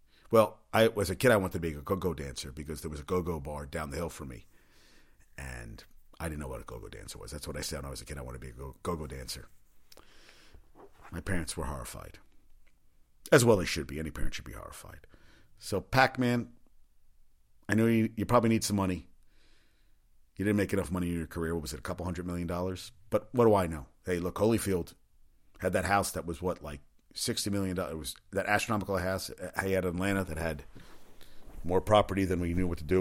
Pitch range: 80-100 Hz